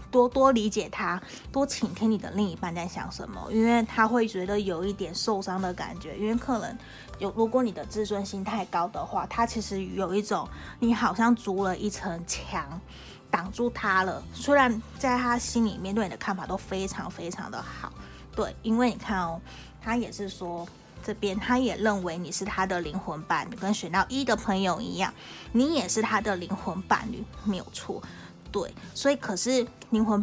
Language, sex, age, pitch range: Chinese, female, 20-39, 185-230 Hz